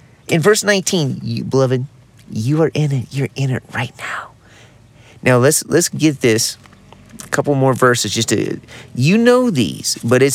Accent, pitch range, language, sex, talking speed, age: American, 115-150 Hz, English, male, 175 wpm, 30-49